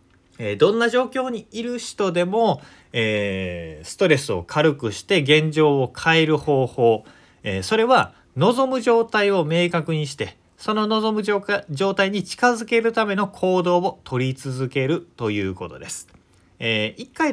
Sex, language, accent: male, Japanese, native